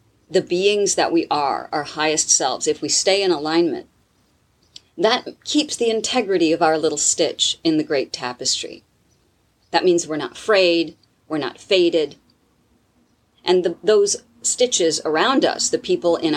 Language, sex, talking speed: English, female, 150 wpm